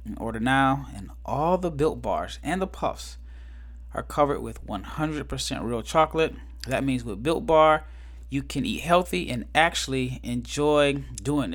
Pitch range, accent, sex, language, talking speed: 115-155 Hz, American, male, English, 150 wpm